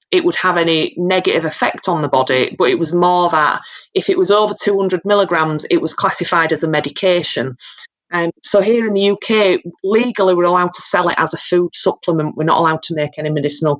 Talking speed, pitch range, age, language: 215 wpm, 160-215 Hz, 30-49, English